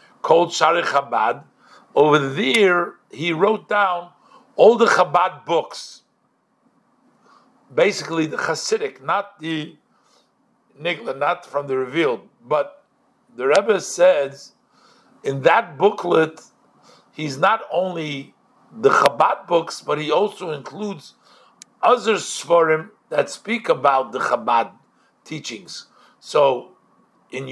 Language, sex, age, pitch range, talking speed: English, male, 50-69, 150-210 Hz, 105 wpm